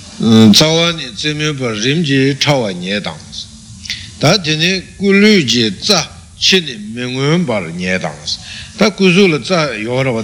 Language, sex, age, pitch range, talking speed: Italian, male, 60-79, 105-150 Hz, 90 wpm